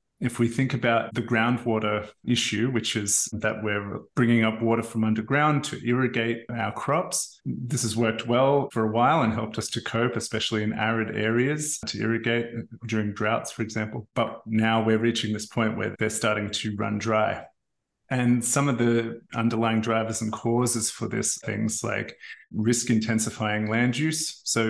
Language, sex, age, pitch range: English, male, 30-49, 110-120 Hz